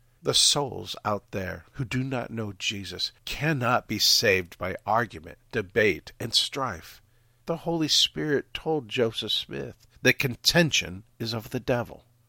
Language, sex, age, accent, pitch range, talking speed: English, male, 50-69, American, 105-130 Hz, 140 wpm